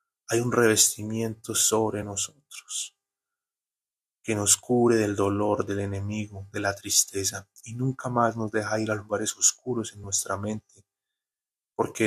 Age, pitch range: 30-49, 105-120 Hz